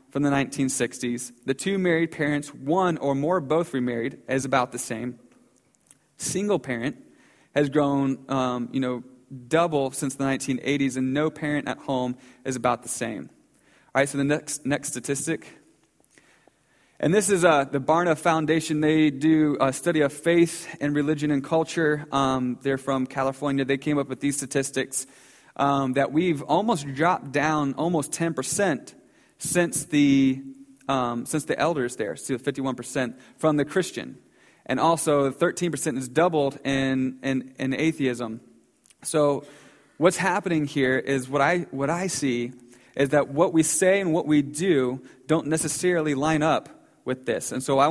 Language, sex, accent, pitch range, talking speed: English, male, American, 130-160 Hz, 160 wpm